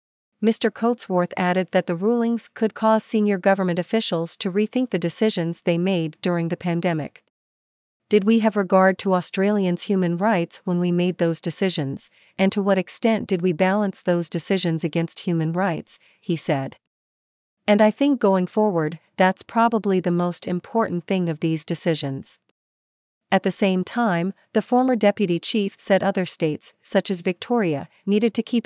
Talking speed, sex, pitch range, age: 165 wpm, female, 170-210 Hz, 40-59